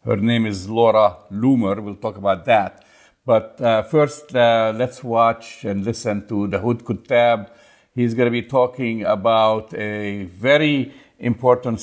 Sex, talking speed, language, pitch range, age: male, 150 wpm, English, 100-115 Hz, 50-69